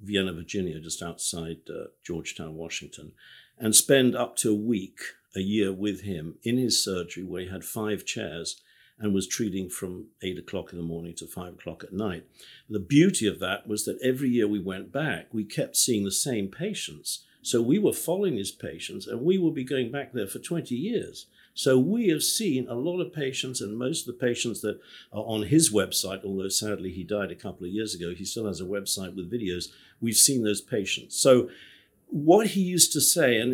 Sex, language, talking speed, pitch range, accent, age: male, English, 210 wpm, 95-125 Hz, British, 50-69